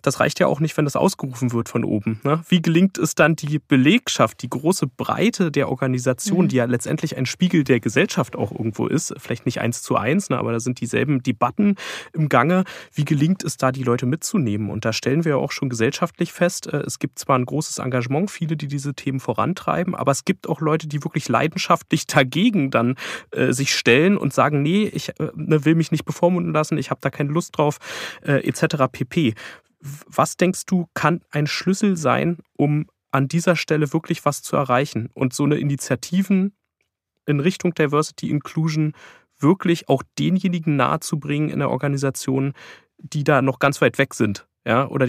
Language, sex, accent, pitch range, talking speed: German, male, German, 130-165 Hz, 185 wpm